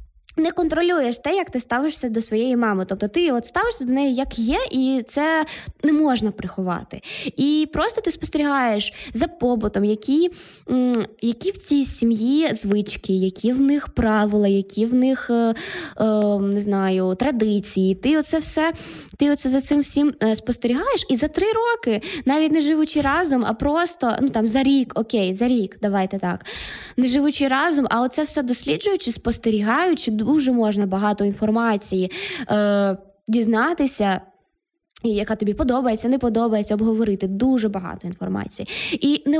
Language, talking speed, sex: Ukrainian, 145 wpm, female